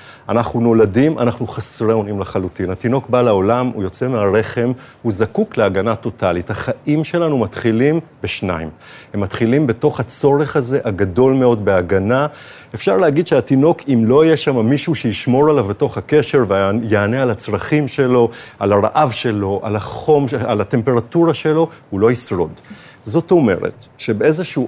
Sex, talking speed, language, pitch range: male, 140 wpm, Hebrew, 105-150 Hz